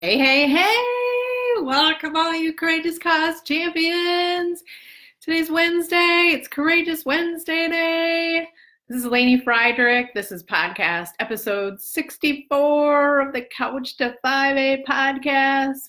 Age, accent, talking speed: 30-49, American, 115 wpm